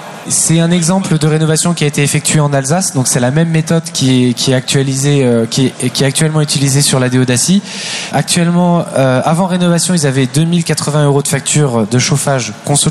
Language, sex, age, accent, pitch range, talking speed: French, male, 20-39, French, 135-165 Hz, 185 wpm